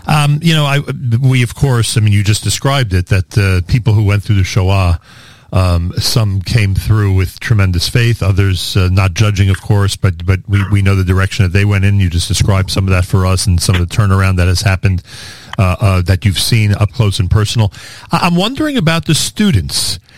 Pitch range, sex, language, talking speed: 100-125 Hz, male, English, 225 wpm